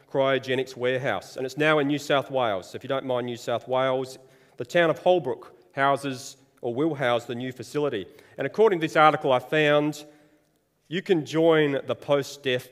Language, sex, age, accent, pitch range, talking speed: English, male, 30-49, Australian, 125-150 Hz, 190 wpm